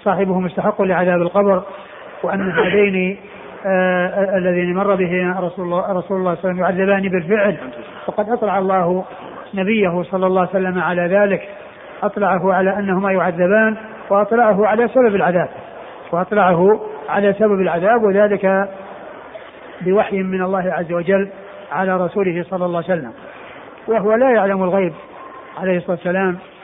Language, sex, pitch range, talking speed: Arabic, male, 185-205 Hz, 135 wpm